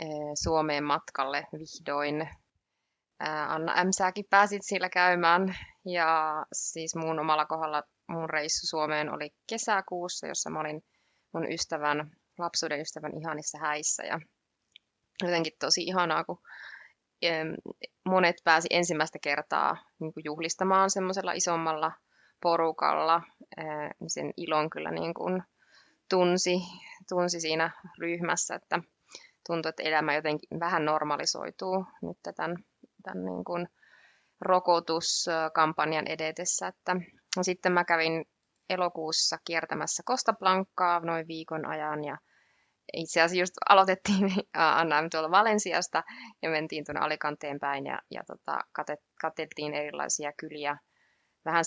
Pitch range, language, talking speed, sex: 155-180 Hz, Finnish, 105 wpm, female